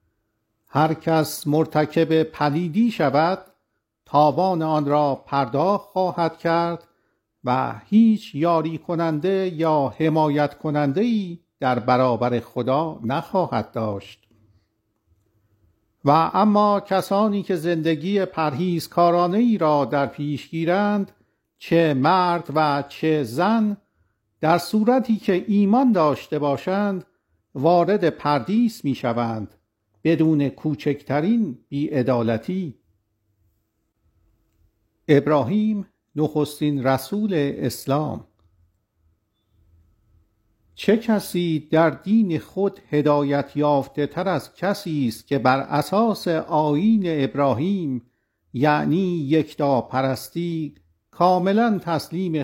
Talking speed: 90 wpm